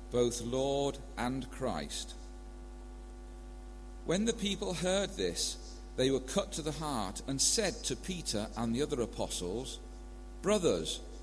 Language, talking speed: English, 130 wpm